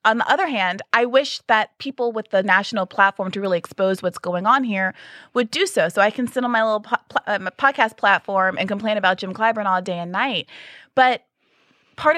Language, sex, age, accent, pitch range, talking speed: English, female, 30-49, American, 190-250 Hz, 225 wpm